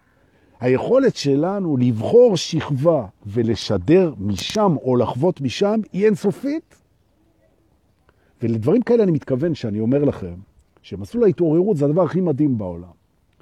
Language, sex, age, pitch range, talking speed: Hebrew, male, 50-69, 115-190 Hz, 105 wpm